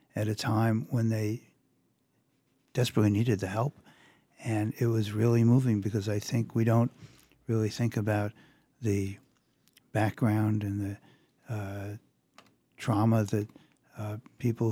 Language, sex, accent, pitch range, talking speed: English, male, American, 105-125 Hz, 125 wpm